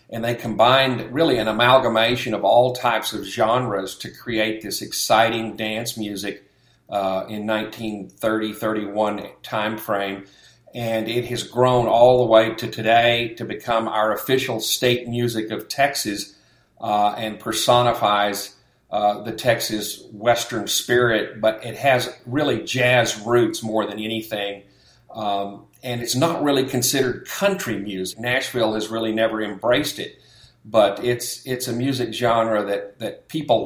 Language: English